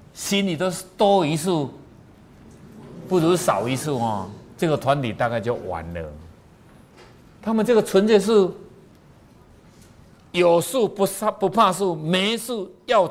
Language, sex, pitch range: Chinese, male, 125-190 Hz